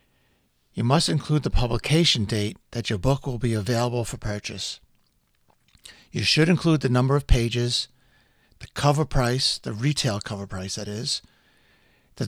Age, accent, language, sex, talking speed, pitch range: 50-69, American, English, male, 150 wpm, 110-130 Hz